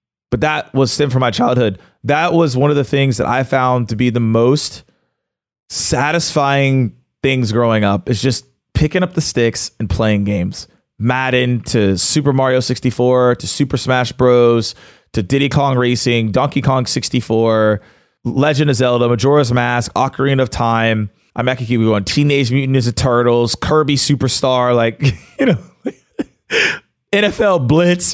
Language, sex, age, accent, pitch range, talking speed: English, male, 20-39, American, 115-145 Hz, 155 wpm